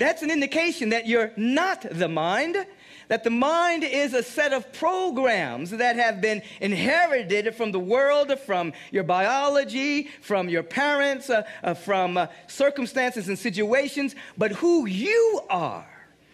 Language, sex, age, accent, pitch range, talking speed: English, male, 40-59, American, 220-310 Hz, 145 wpm